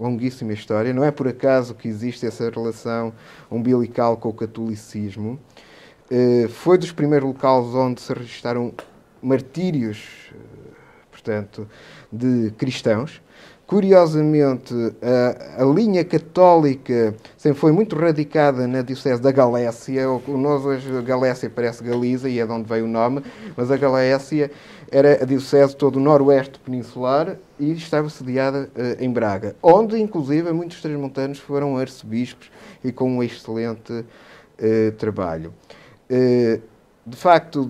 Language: Portuguese